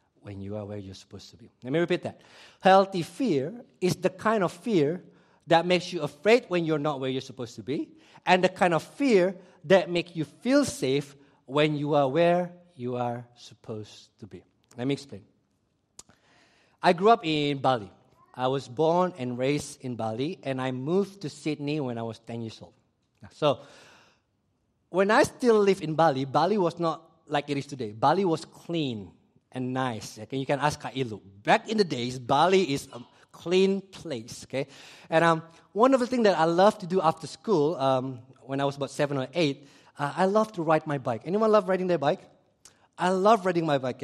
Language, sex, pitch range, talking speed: English, male, 130-180 Hz, 200 wpm